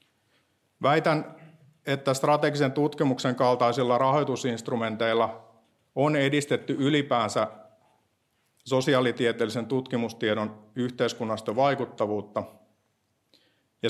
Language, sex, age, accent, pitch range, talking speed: Finnish, male, 50-69, native, 110-135 Hz, 60 wpm